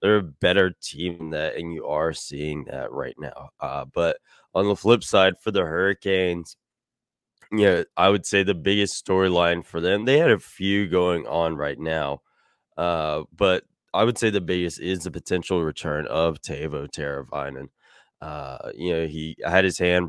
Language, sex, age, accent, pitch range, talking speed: English, male, 20-39, American, 80-90 Hz, 175 wpm